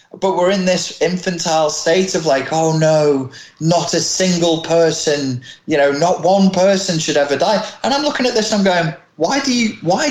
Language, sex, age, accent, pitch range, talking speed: English, male, 30-49, British, 115-180 Hz, 200 wpm